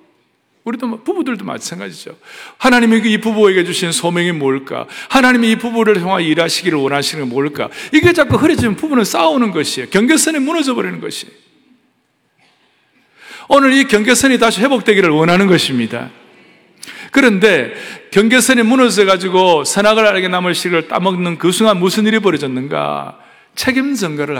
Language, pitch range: Korean, 155-250 Hz